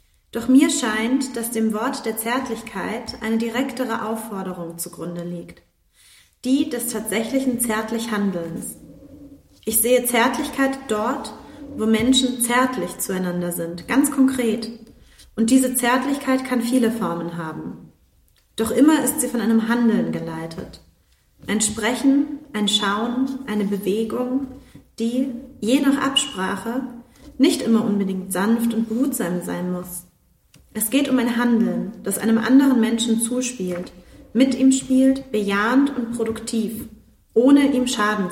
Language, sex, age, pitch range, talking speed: German, female, 30-49, 210-260 Hz, 125 wpm